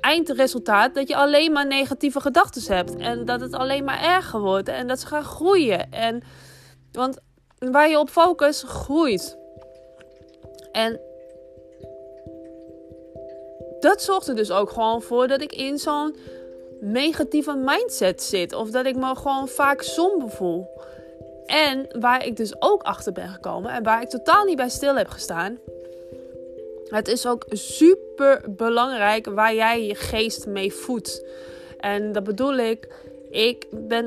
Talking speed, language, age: 150 wpm, Dutch, 20-39